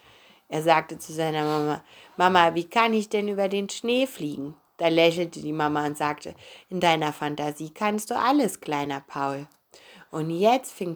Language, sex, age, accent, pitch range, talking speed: German, female, 30-49, German, 155-200 Hz, 170 wpm